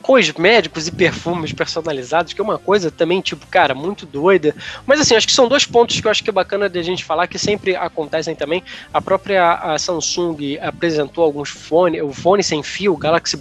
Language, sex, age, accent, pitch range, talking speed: Portuguese, male, 20-39, Brazilian, 150-180 Hz, 220 wpm